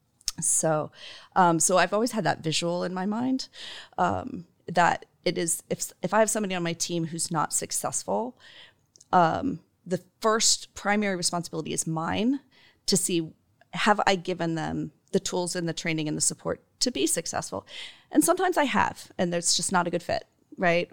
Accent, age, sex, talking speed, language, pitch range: American, 40-59, female, 180 wpm, English, 165-205 Hz